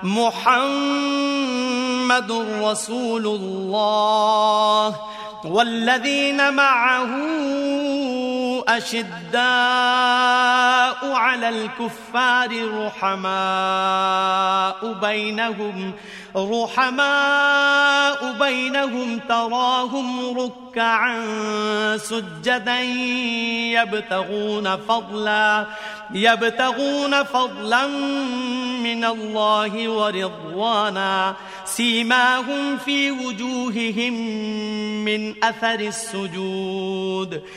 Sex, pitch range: male, 215-250 Hz